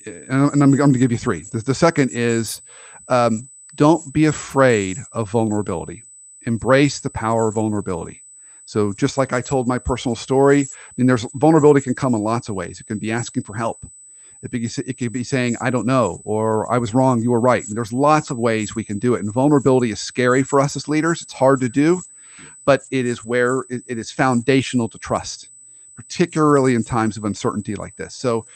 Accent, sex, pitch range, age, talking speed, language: American, male, 115-135 Hz, 40-59, 215 wpm, English